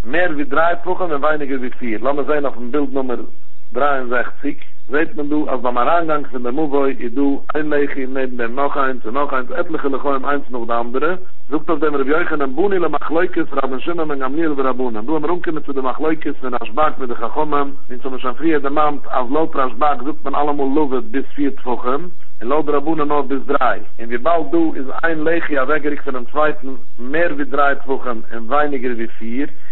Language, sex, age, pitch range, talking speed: English, male, 50-69, 135-160 Hz, 165 wpm